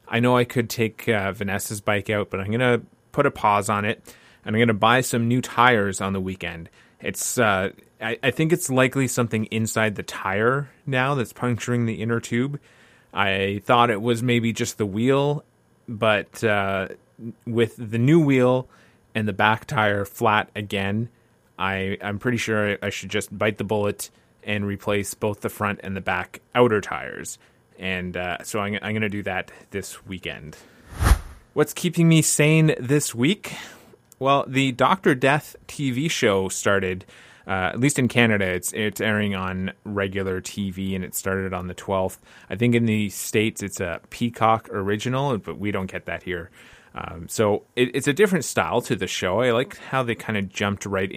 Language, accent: English, American